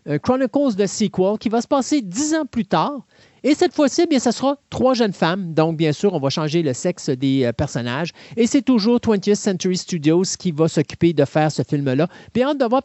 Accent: Canadian